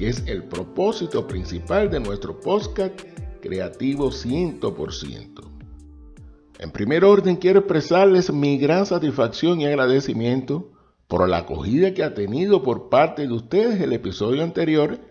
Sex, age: male, 60-79